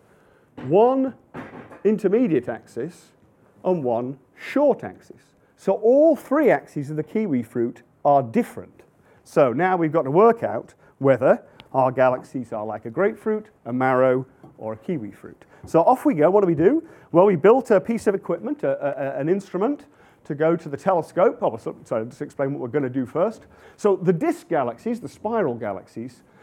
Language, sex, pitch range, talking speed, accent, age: English, male, 135-205 Hz, 175 wpm, British, 40-59